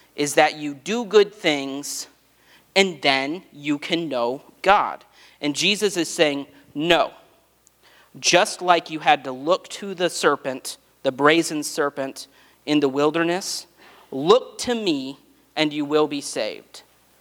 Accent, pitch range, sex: American, 145-185 Hz, male